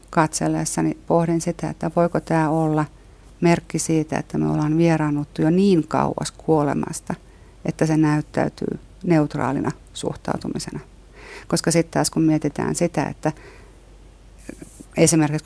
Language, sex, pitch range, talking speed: Finnish, female, 150-165 Hz, 115 wpm